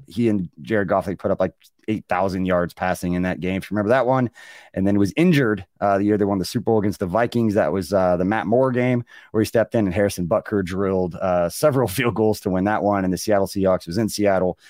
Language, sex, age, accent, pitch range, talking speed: English, male, 30-49, American, 100-140 Hz, 260 wpm